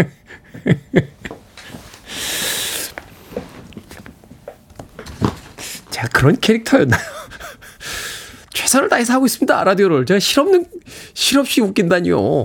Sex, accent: male, native